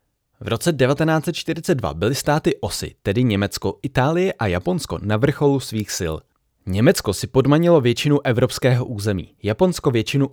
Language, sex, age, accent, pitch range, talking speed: Czech, male, 20-39, native, 105-145 Hz, 135 wpm